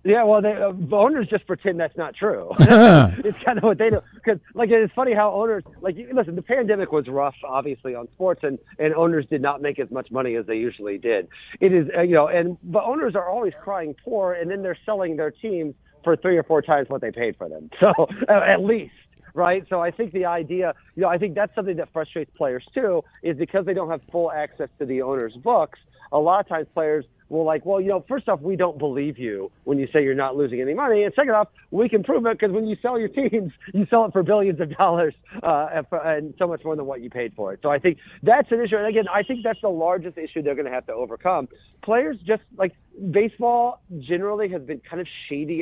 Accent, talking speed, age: American, 250 wpm, 50-69